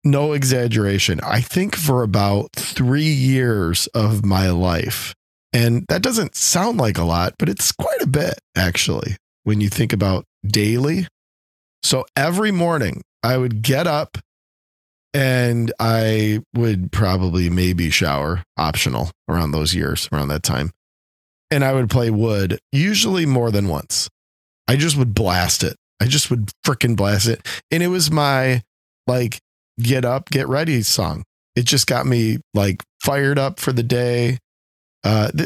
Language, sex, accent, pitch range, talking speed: English, male, American, 90-130 Hz, 150 wpm